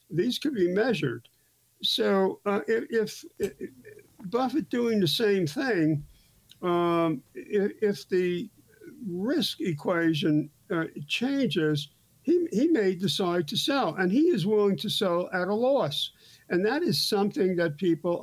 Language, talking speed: English, 135 wpm